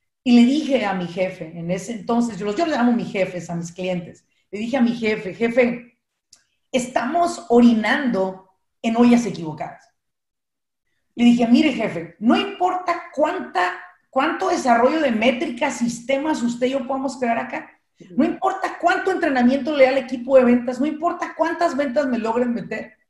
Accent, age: Mexican, 40-59